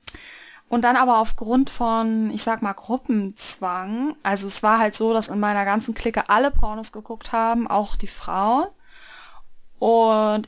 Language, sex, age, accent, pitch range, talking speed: German, female, 20-39, German, 225-270 Hz, 155 wpm